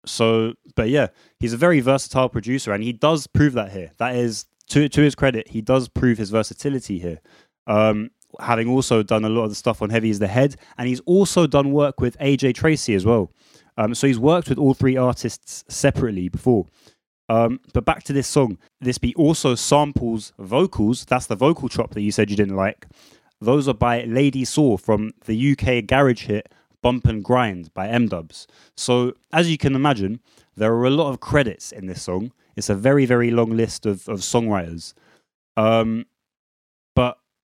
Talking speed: 195 wpm